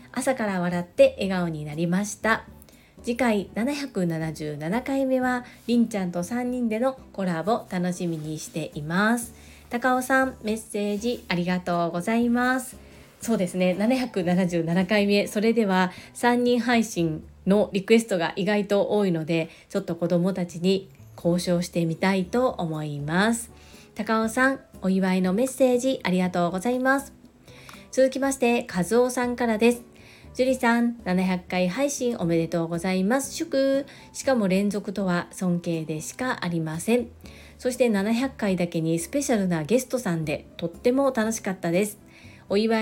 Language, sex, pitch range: Japanese, female, 175-245 Hz